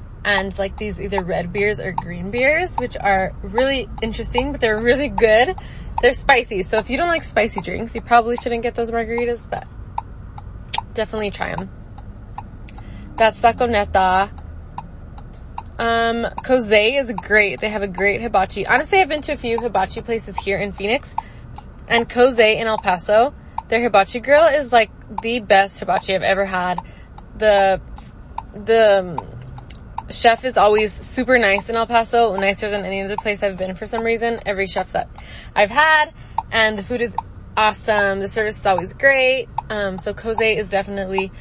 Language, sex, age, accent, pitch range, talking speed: English, female, 20-39, American, 195-235 Hz, 165 wpm